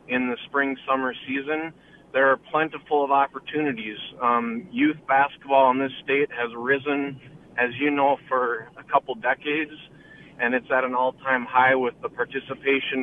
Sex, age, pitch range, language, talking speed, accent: male, 40-59, 130-150 Hz, English, 155 wpm, American